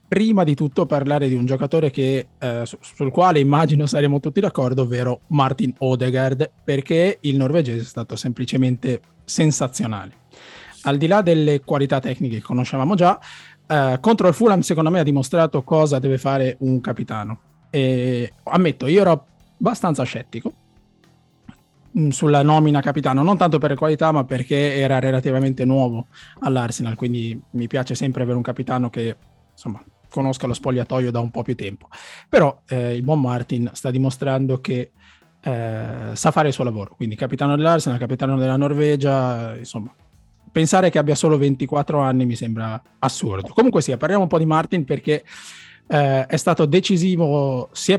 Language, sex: Italian, male